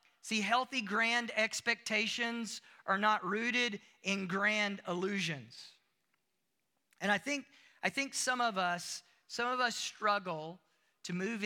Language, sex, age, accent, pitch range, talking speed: English, male, 40-59, American, 205-290 Hz, 125 wpm